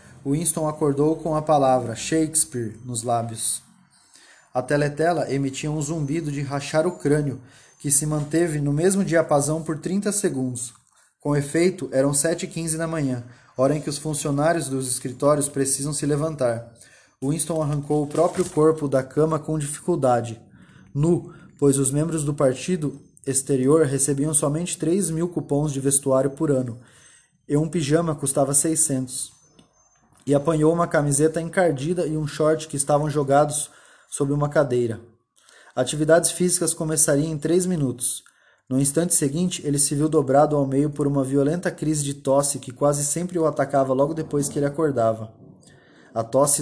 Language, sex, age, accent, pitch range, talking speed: Portuguese, male, 20-39, Brazilian, 135-160 Hz, 155 wpm